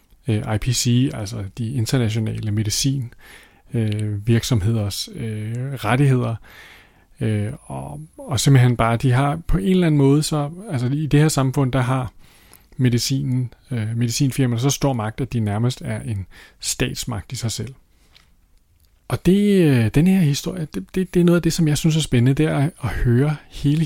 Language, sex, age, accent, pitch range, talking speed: Danish, male, 30-49, native, 110-140 Hz, 165 wpm